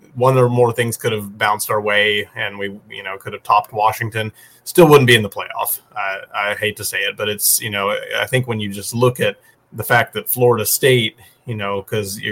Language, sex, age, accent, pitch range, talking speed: English, male, 30-49, American, 105-125 Hz, 235 wpm